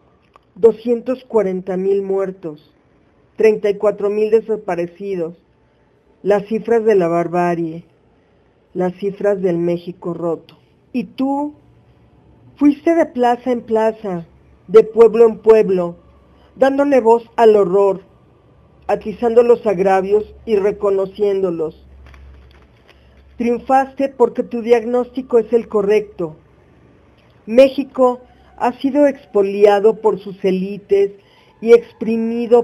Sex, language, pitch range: female, Spanish, 190-230 Hz